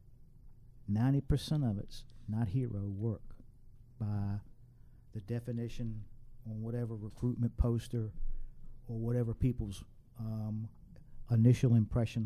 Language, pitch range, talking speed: English, 115-140 Hz, 90 wpm